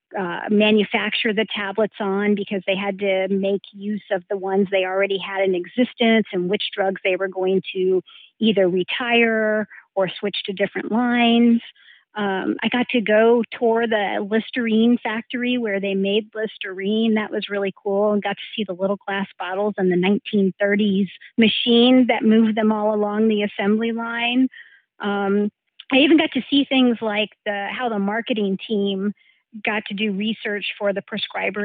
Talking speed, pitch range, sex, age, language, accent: 170 wpm, 195-225 Hz, female, 40-59, English, American